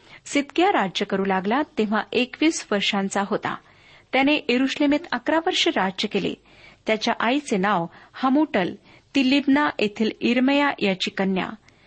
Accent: native